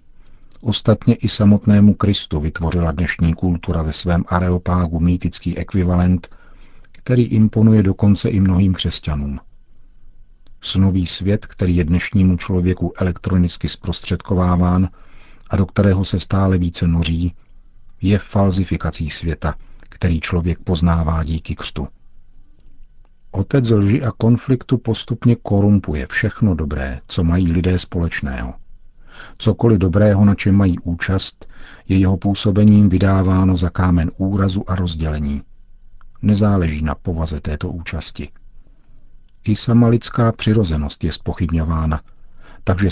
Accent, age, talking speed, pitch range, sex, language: native, 50-69, 110 wpm, 85-105 Hz, male, Czech